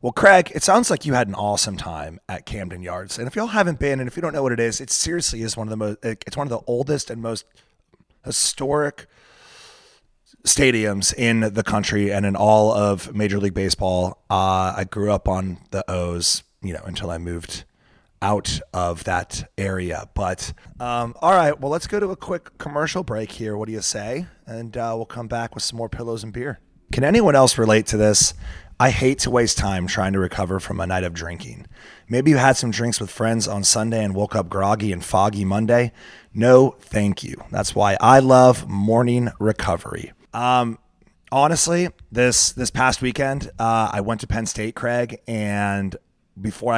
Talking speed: 200 wpm